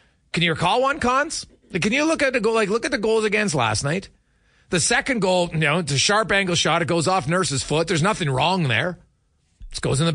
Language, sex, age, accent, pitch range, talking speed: English, male, 30-49, American, 130-205 Hz, 250 wpm